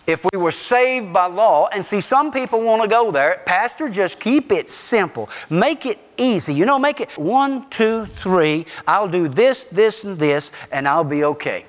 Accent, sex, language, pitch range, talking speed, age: American, male, English, 175-260 Hz, 200 wpm, 50-69